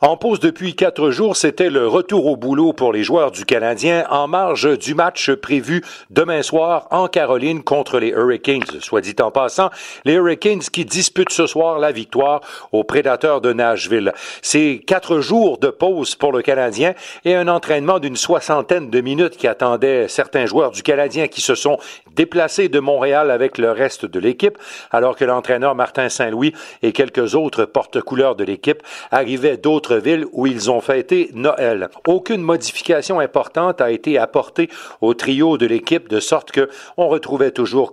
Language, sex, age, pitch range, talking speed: French, male, 60-79, 130-175 Hz, 170 wpm